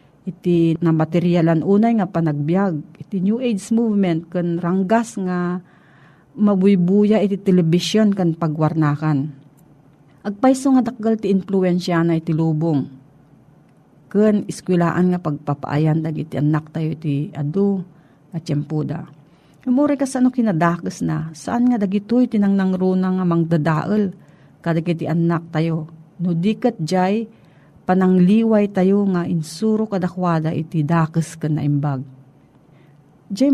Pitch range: 160-205 Hz